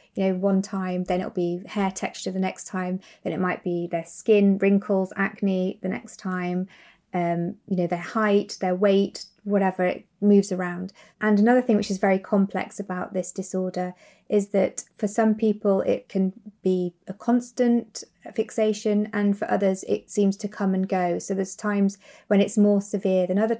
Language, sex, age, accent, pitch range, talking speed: English, female, 30-49, British, 185-205 Hz, 185 wpm